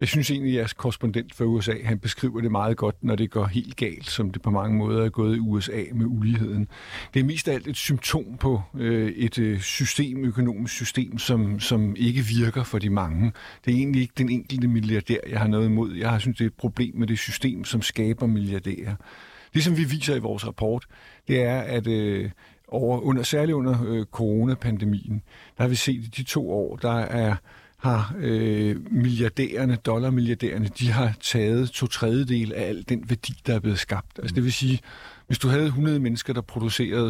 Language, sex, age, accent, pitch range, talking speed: Danish, male, 50-69, native, 110-125 Hz, 205 wpm